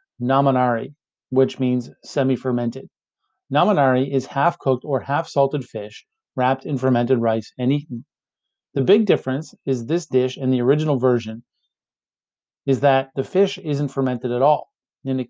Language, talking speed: English, 140 wpm